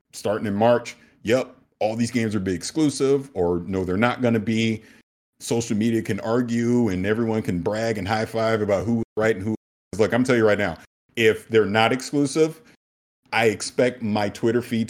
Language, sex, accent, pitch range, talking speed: English, male, American, 95-120 Hz, 200 wpm